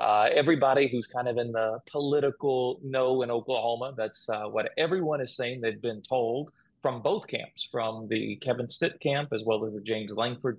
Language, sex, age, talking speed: English, male, 30-49, 195 wpm